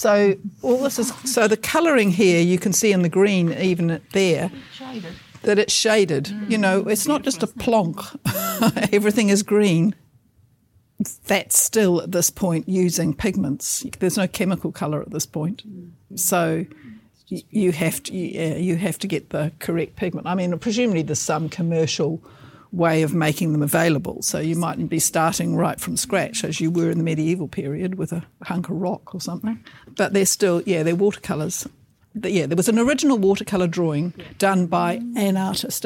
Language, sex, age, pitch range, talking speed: English, female, 60-79, 165-200 Hz, 175 wpm